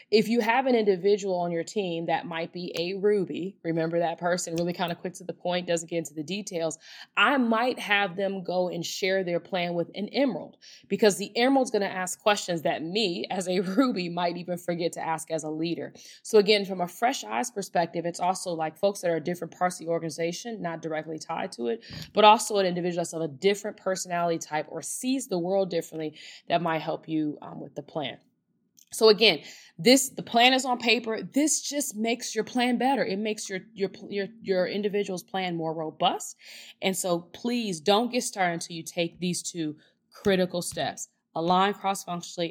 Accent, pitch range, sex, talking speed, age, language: American, 170-210 Hz, female, 205 wpm, 20-39, English